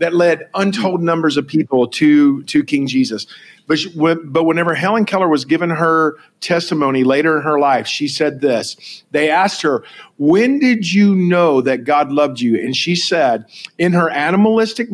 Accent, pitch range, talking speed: American, 145-185 Hz, 175 wpm